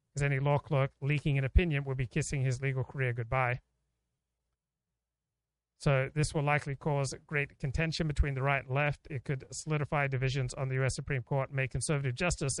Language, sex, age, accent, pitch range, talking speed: English, male, 40-59, American, 130-150 Hz, 180 wpm